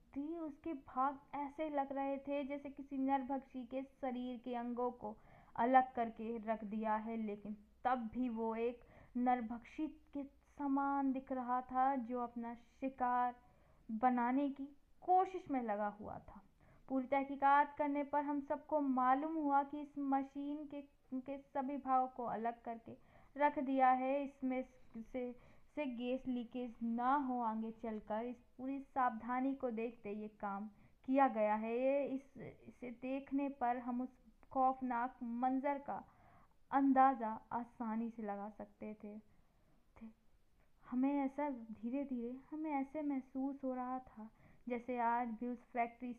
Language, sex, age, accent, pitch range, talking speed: Hindi, female, 20-39, native, 235-275 Hz, 145 wpm